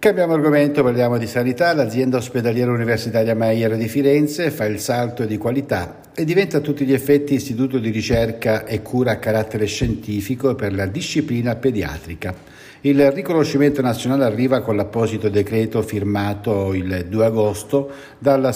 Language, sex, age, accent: Italian, male, 60-79, native